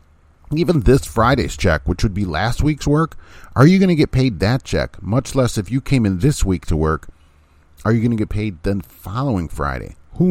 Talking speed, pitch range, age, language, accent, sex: 220 wpm, 80-120 Hz, 40-59, English, American, male